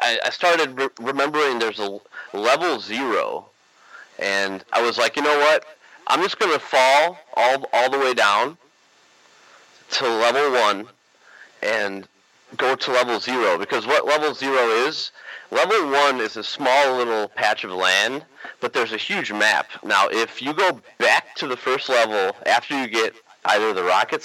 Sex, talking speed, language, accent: male, 160 wpm, English, American